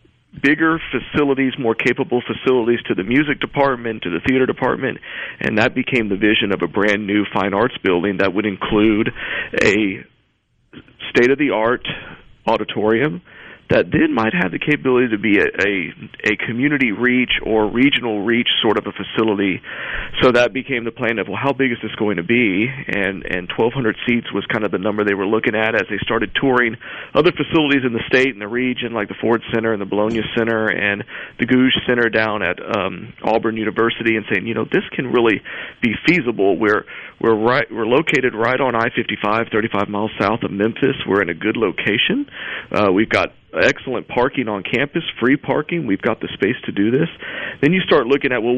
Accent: American